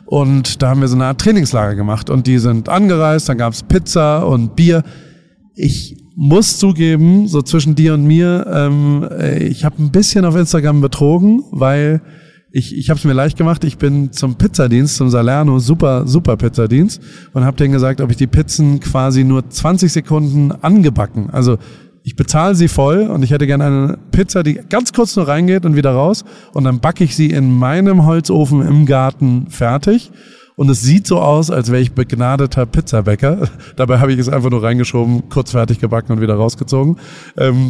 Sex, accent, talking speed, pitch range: male, German, 190 wpm, 125-165 Hz